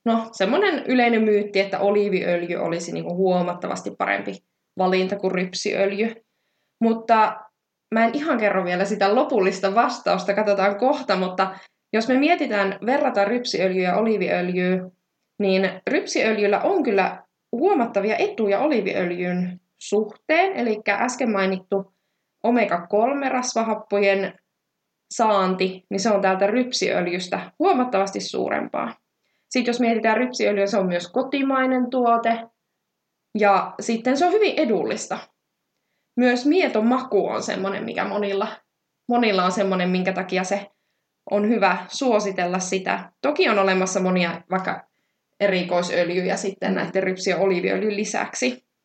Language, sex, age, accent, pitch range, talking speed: Finnish, female, 20-39, native, 190-230 Hz, 115 wpm